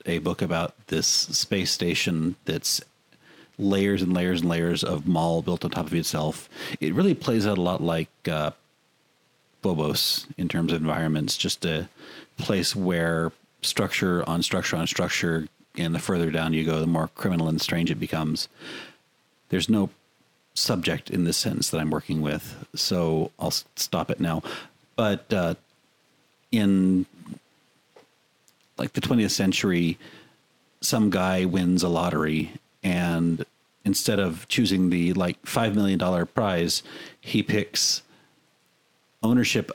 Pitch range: 85-95 Hz